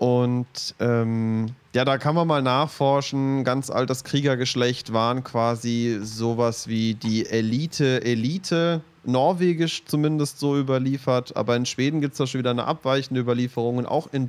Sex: male